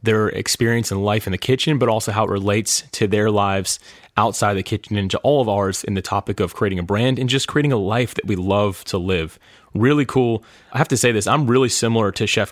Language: English